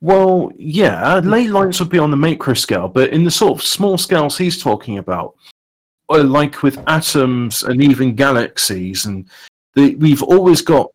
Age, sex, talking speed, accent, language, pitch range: 40-59, male, 170 wpm, British, English, 115-165 Hz